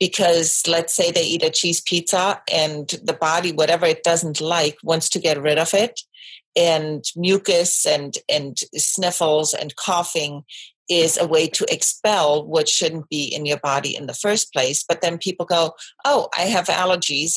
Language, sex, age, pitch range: English, female, 40-59, 150-185 Hz